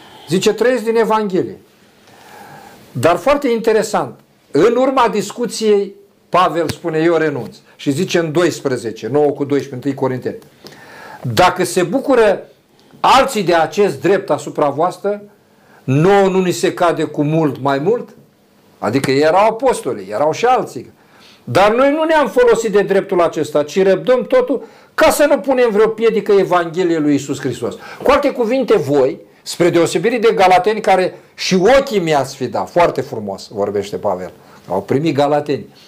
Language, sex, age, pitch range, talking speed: Romanian, male, 50-69, 155-230 Hz, 145 wpm